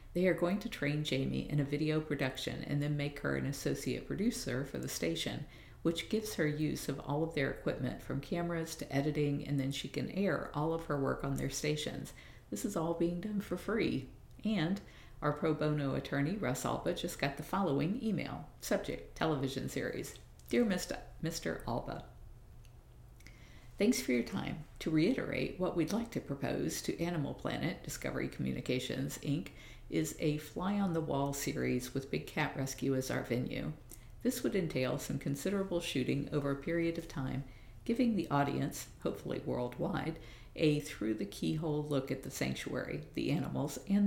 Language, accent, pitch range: English, American, 135-165 Hz